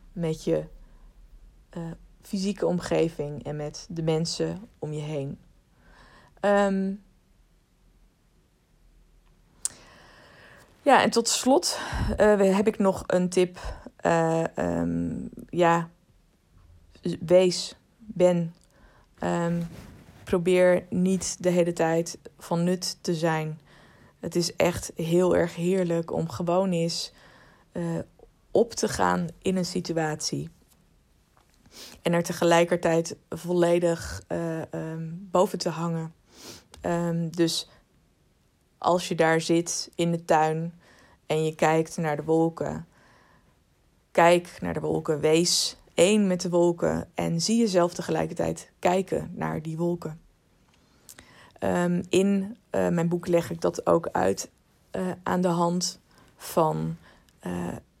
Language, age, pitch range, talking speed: Dutch, 20-39, 155-180 Hz, 110 wpm